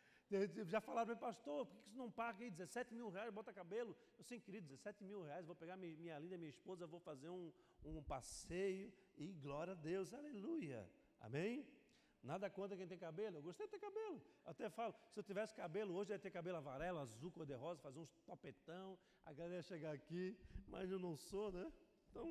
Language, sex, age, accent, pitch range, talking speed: Portuguese, male, 50-69, Brazilian, 170-230 Hz, 210 wpm